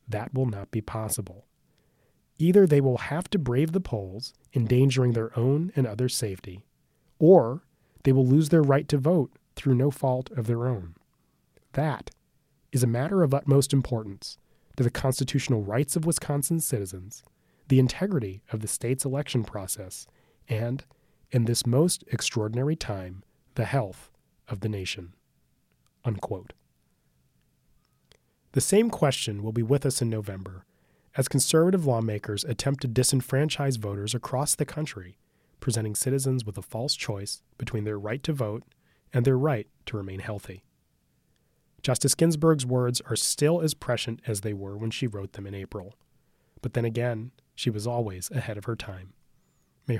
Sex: male